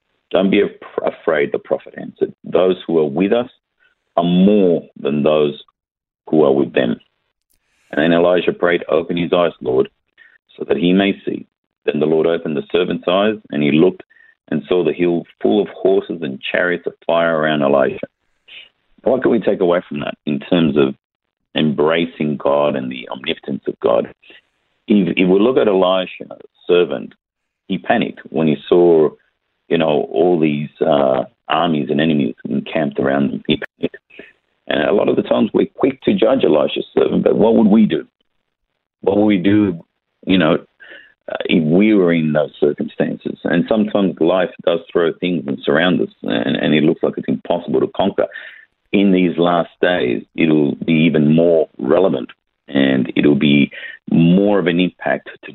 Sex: male